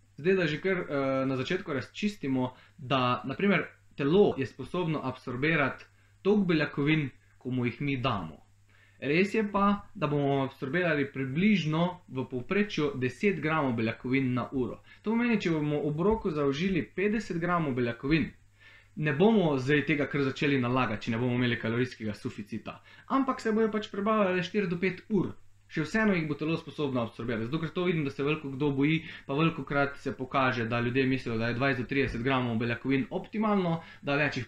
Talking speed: 170 wpm